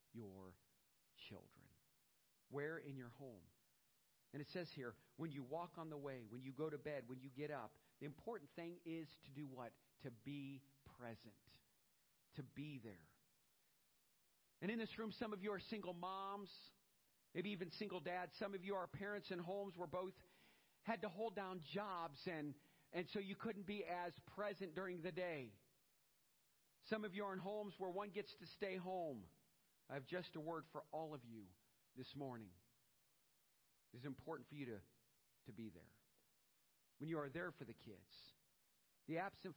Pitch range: 130-190 Hz